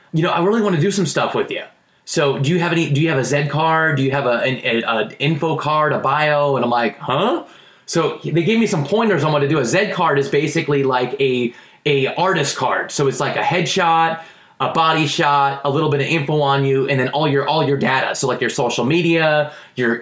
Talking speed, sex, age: 250 wpm, male, 20-39